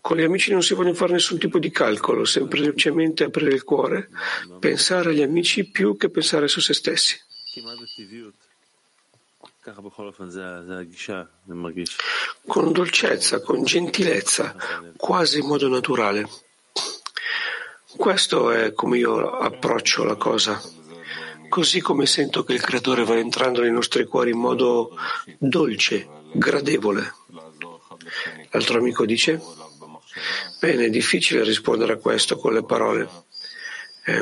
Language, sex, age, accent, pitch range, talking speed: Italian, male, 50-69, native, 105-170 Hz, 115 wpm